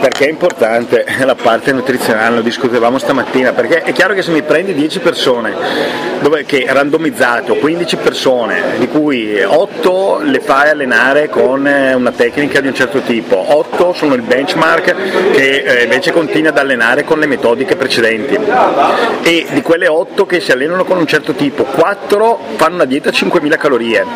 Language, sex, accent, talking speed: Italian, male, native, 165 wpm